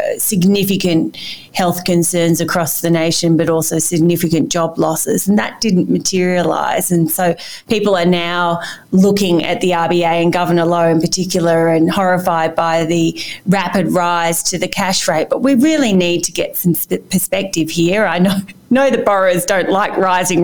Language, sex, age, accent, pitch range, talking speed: English, female, 30-49, Australian, 170-200 Hz, 165 wpm